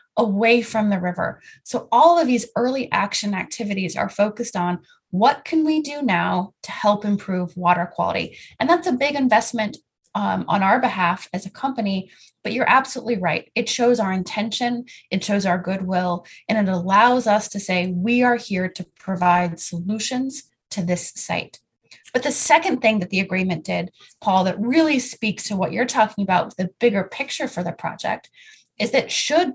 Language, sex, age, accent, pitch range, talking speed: English, female, 20-39, American, 190-245 Hz, 180 wpm